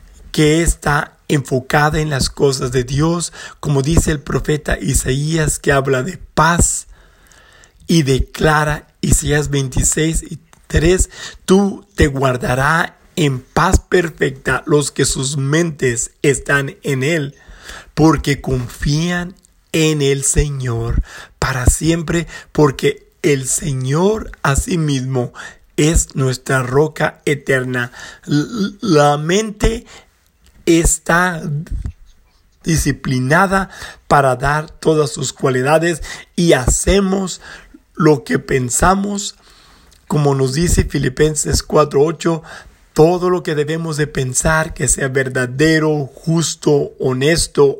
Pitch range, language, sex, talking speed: 135-165 Hz, English, male, 100 wpm